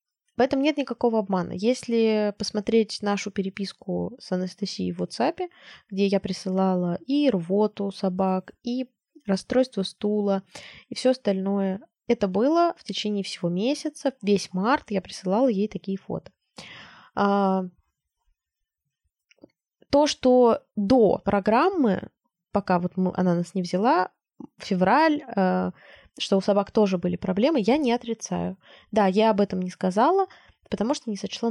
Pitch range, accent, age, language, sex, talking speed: 190-240 Hz, native, 20-39, Russian, female, 130 wpm